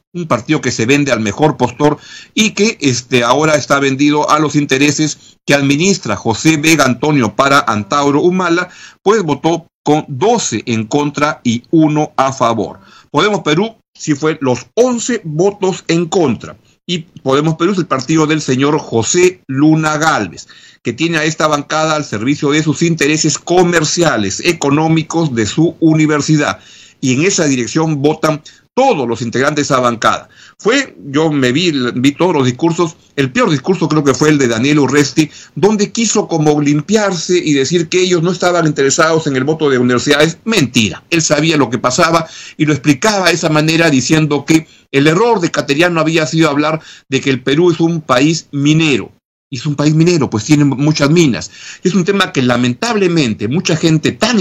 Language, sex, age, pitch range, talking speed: Spanish, male, 50-69, 140-165 Hz, 175 wpm